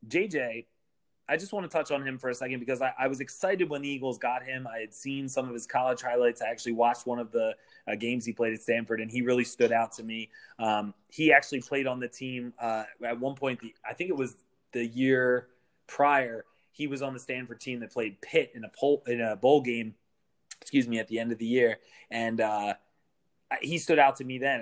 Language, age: English, 20-39